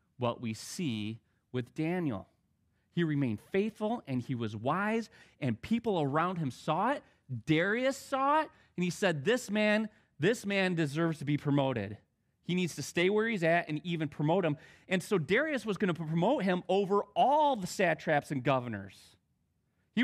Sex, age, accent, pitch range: male, 30-49, American, 110-160 Hz